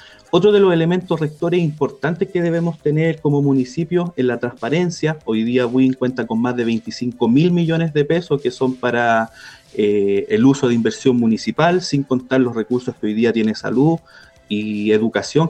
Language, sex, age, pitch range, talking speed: Spanish, male, 30-49, 125-165 Hz, 180 wpm